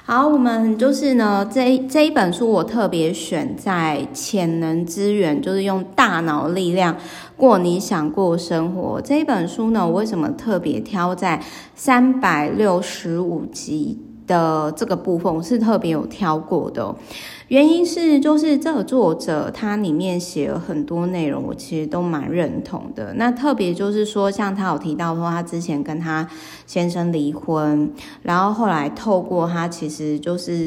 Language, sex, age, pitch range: Chinese, female, 20-39, 165-220 Hz